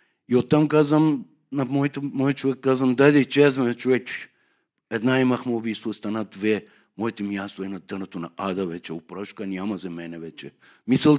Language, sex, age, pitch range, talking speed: Bulgarian, male, 60-79, 115-145 Hz, 160 wpm